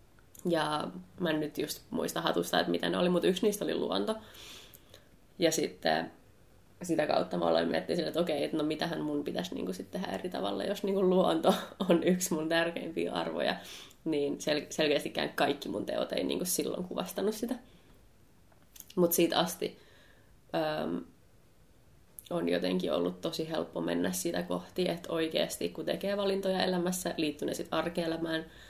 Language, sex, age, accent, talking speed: Finnish, female, 20-39, native, 155 wpm